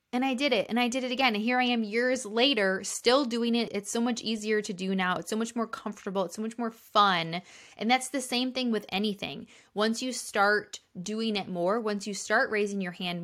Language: English